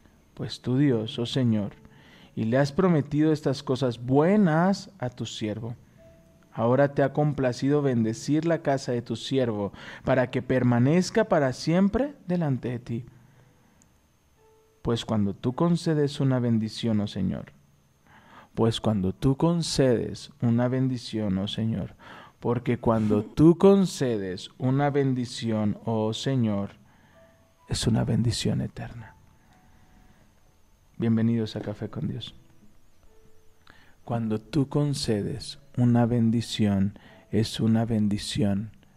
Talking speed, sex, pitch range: 115 wpm, male, 110-135 Hz